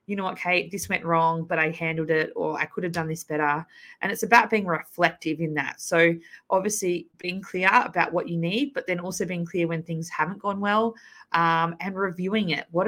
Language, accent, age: English, Australian, 20-39